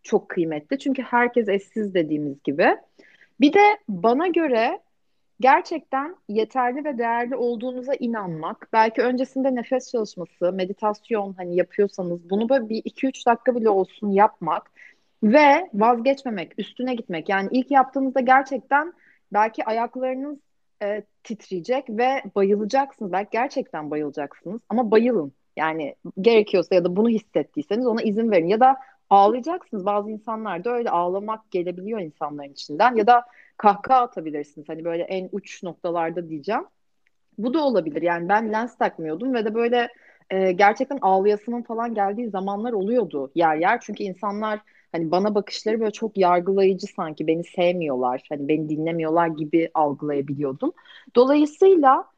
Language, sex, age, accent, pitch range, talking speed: Turkish, female, 30-49, native, 185-255 Hz, 135 wpm